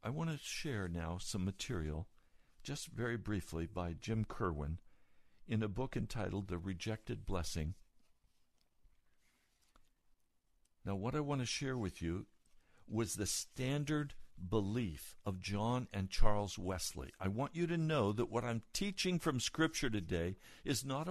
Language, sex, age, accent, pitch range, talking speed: English, male, 60-79, American, 95-130 Hz, 145 wpm